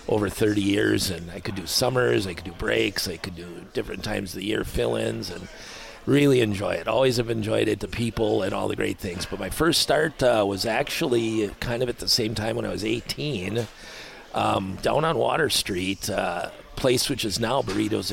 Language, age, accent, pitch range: English, 50-69, American, 100-115 Hz